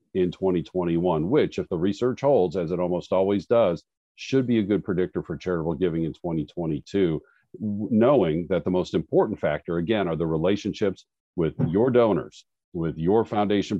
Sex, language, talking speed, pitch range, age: male, English, 165 wpm, 95-130 Hz, 50-69